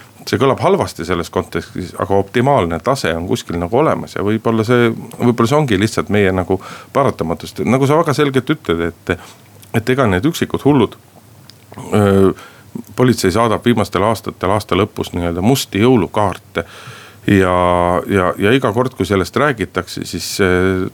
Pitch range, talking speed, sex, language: 95-125 Hz, 150 wpm, male, Finnish